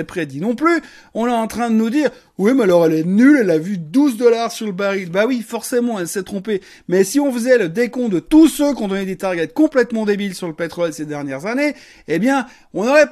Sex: male